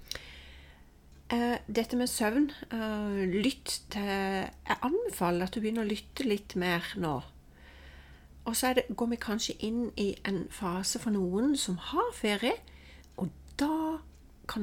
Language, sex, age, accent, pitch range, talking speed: English, female, 40-59, Swedish, 170-230 Hz, 140 wpm